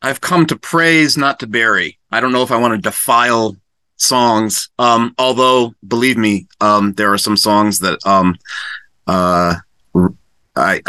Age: 30-49